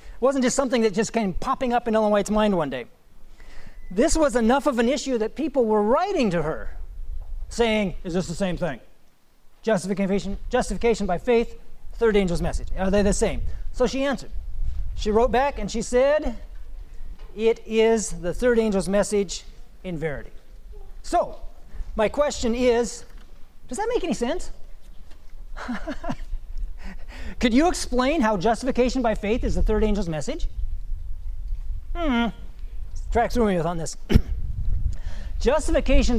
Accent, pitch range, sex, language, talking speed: American, 155-245 Hz, male, English, 150 wpm